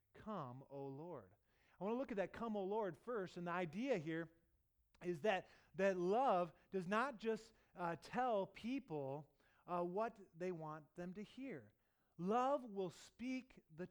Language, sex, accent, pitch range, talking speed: English, male, American, 160-220 Hz, 175 wpm